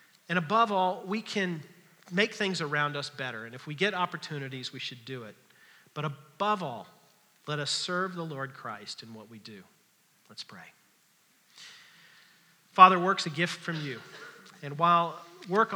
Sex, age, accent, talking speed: male, 40-59, American, 165 wpm